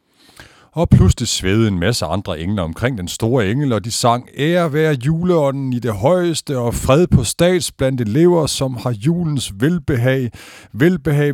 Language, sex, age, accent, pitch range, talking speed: Danish, male, 50-69, native, 85-120 Hz, 160 wpm